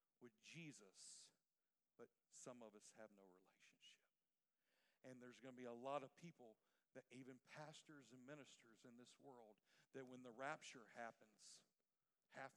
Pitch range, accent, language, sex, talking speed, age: 130-165 Hz, American, English, male, 155 wpm, 50-69